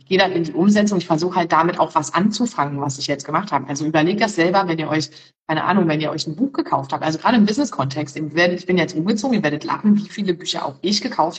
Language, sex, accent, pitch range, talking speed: German, female, German, 165-205 Hz, 265 wpm